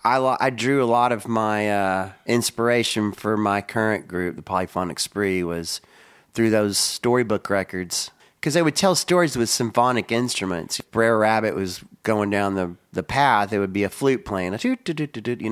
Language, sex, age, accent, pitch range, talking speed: English, male, 30-49, American, 100-115 Hz, 180 wpm